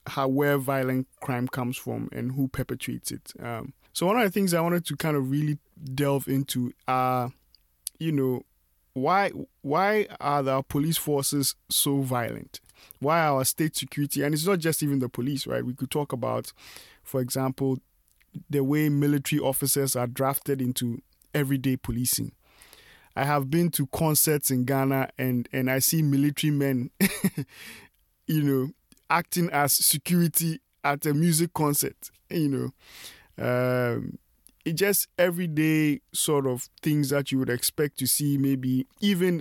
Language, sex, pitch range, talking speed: English, male, 130-150 Hz, 155 wpm